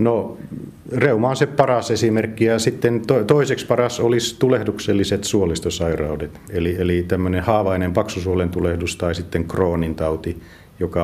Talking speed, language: 130 wpm, Finnish